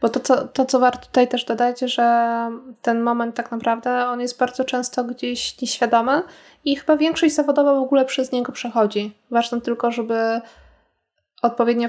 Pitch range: 210-250 Hz